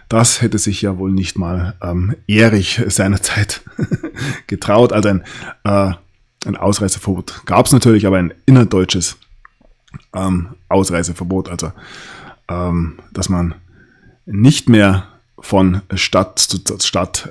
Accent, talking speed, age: German, 115 wpm, 20-39